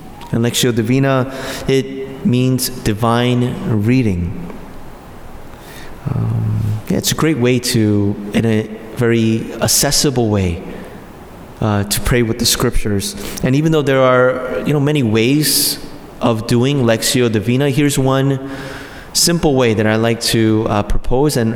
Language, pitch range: English, 110-140 Hz